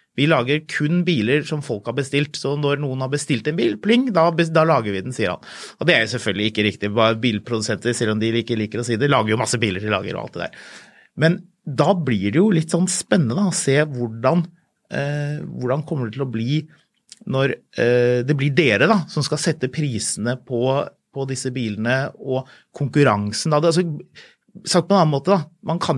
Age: 30-49